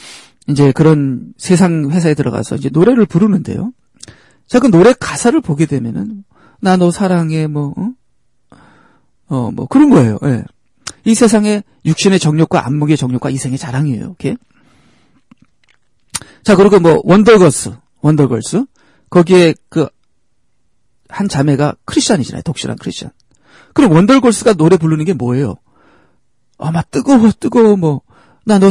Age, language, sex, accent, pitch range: 40-59, Korean, male, native, 150-235 Hz